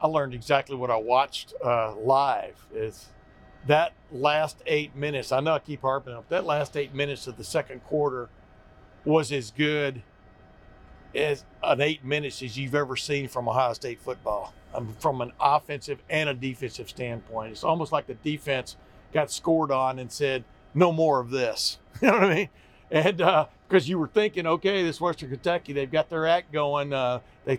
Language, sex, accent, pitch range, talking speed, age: English, male, American, 130-155 Hz, 185 wpm, 60-79